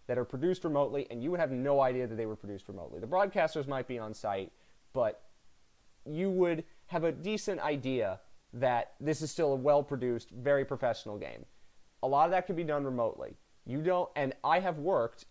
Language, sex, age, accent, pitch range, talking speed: English, male, 30-49, American, 115-155 Hz, 200 wpm